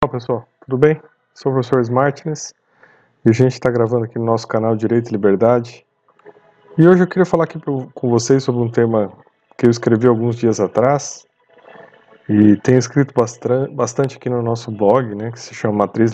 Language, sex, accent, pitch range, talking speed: Portuguese, male, Brazilian, 115-145 Hz, 185 wpm